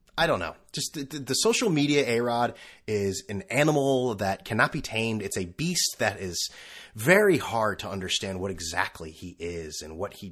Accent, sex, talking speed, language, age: American, male, 190 wpm, English, 30-49